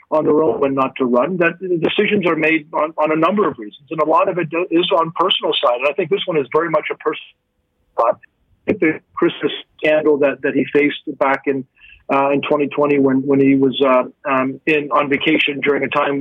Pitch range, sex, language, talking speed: 145-170 Hz, male, English, 235 wpm